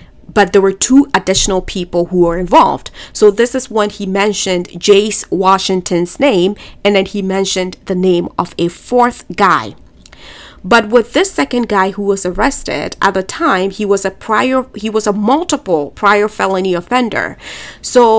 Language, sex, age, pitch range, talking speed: English, female, 30-49, 190-230 Hz, 170 wpm